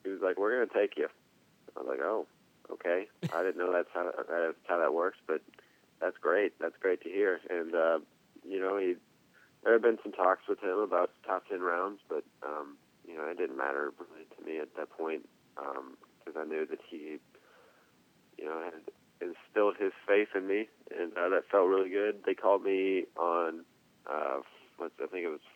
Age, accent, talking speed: 30-49, American, 205 wpm